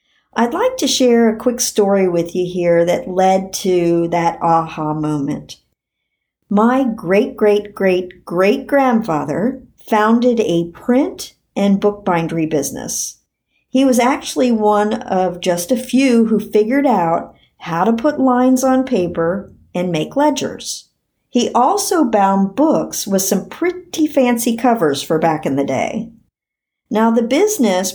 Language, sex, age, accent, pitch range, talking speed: English, male, 50-69, American, 175-240 Hz, 130 wpm